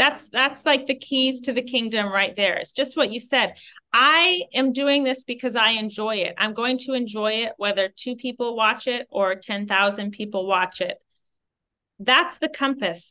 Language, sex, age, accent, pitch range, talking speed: English, female, 30-49, American, 210-265 Hz, 190 wpm